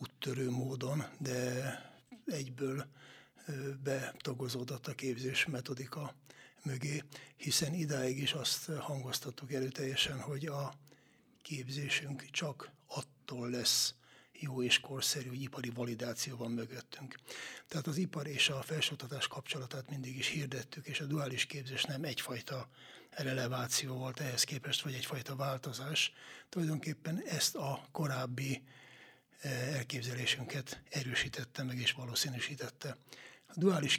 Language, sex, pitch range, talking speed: Hungarian, male, 130-145 Hz, 110 wpm